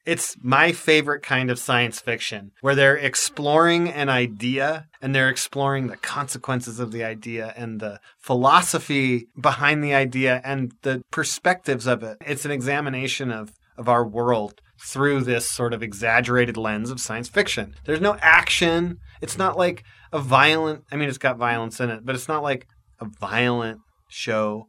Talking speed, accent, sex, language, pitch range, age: 170 wpm, American, male, English, 120-150 Hz, 30-49